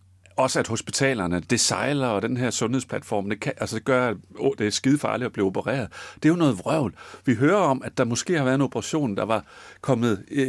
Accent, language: native, Danish